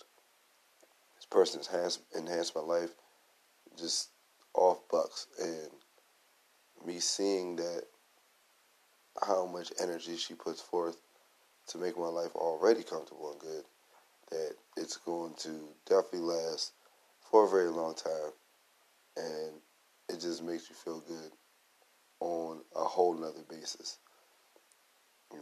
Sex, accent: male, American